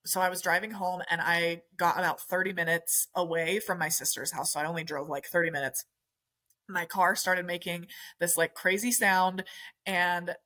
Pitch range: 165-195 Hz